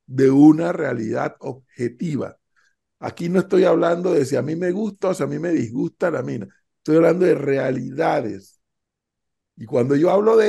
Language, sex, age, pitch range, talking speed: Spanish, male, 60-79, 140-190 Hz, 175 wpm